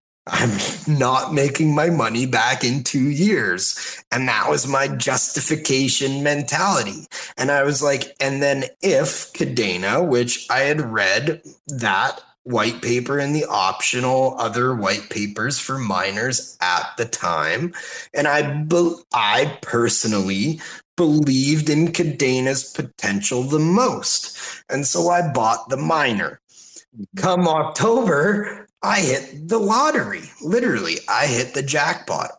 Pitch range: 125-170 Hz